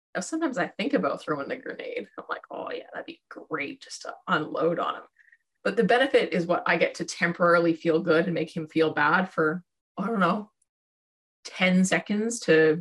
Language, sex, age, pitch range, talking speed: English, female, 20-39, 165-215 Hz, 195 wpm